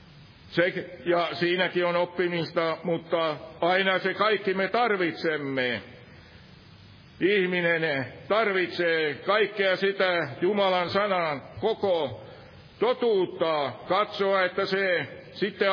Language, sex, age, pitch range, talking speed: Finnish, male, 60-79, 165-205 Hz, 90 wpm